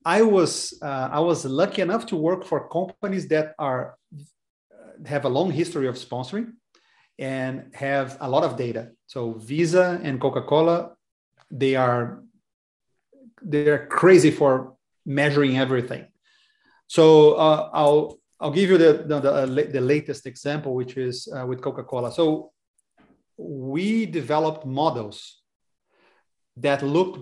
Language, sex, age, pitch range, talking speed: English, male, 30-49, 130-165 Hz, 130 wpm